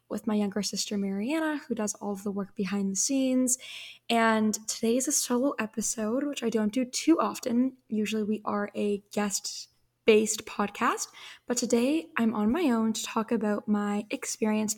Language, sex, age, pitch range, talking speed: English, female, 10-29, 210-240 Hz, 175 wpm